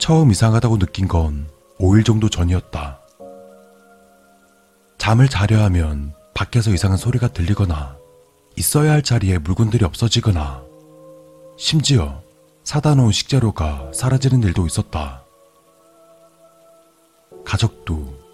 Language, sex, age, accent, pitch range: Korean, male, 30-49, native, 85-115 Hz